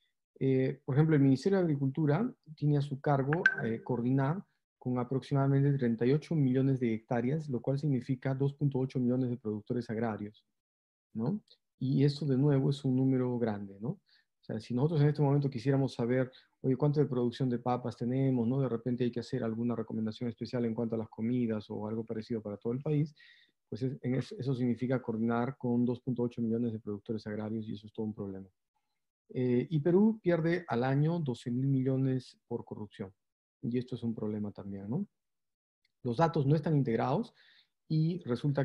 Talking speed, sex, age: 180 wpm, male, 40-59